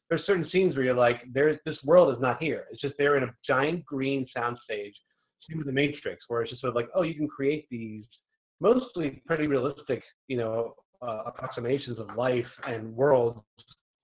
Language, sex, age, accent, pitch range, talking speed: English, male, 30-49, American, 120-150 Hz, 190 wpm